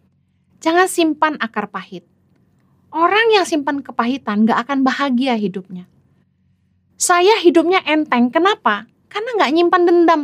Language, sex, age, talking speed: Indonesian, female, 30-49, 115 wpm